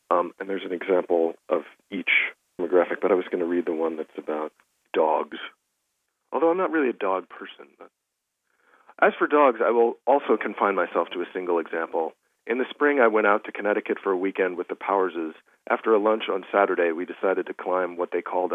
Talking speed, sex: 205 wpm, male